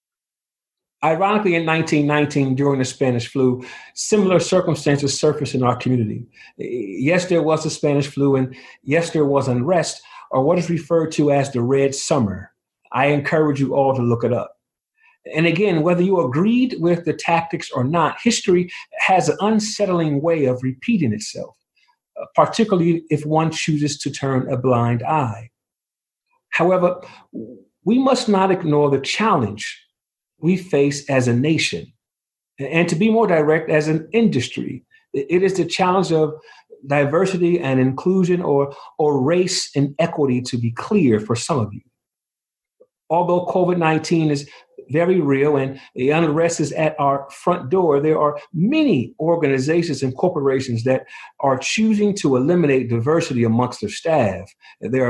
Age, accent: 50-69, American